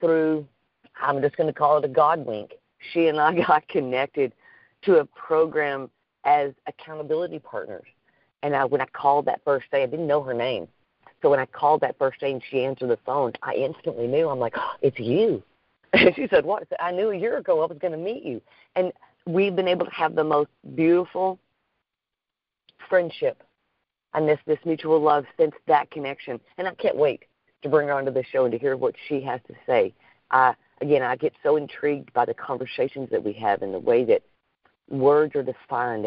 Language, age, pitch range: English, 40-59, 135-175 Hz